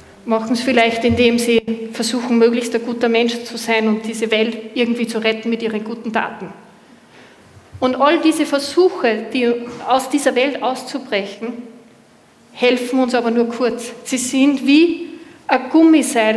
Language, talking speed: German, 150 wpm